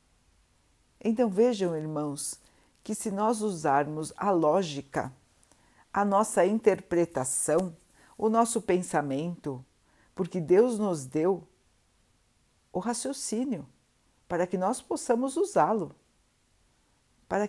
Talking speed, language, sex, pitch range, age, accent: 95 wpm, Portuguese, female, 160-225 Hz, 60-79, Brazilian